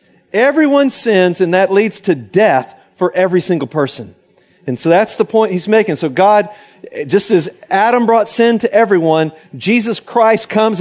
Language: English